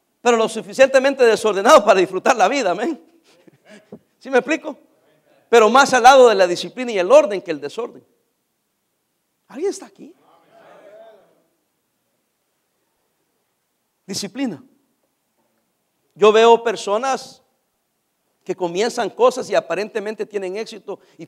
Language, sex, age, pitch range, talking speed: Spanish, male, 50-69, 210-315 Hz, 115 wpm